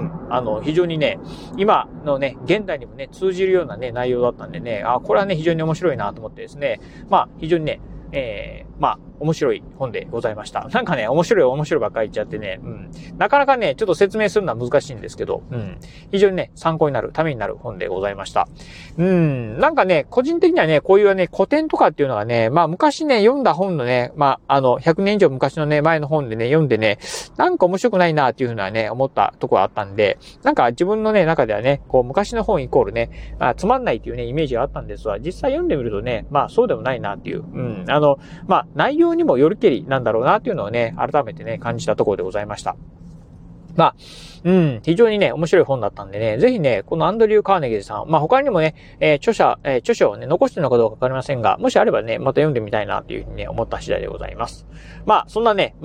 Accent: native